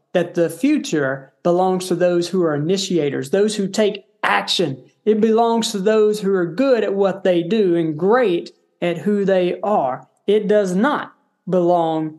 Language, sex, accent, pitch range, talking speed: English, male, American, 170-230 Hz, 165 wpm